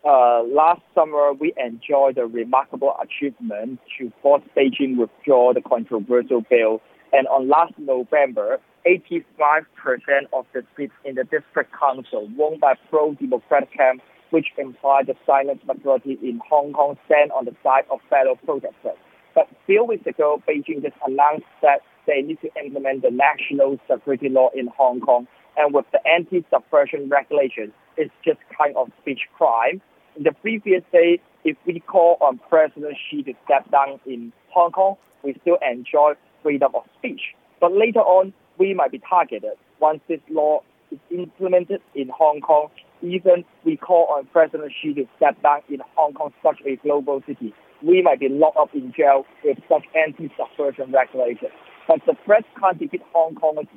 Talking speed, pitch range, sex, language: 165 wpm, 140-190 Hz, male, English